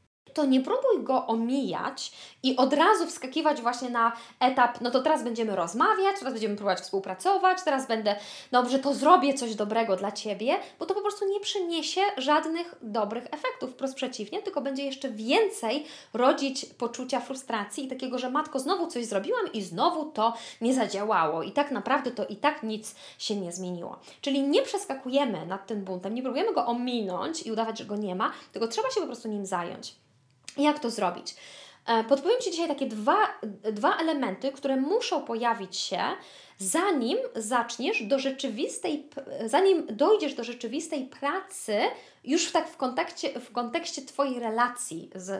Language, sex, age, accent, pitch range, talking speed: Polish, female, 20-39, native, 215-300 Hz, 165 wpm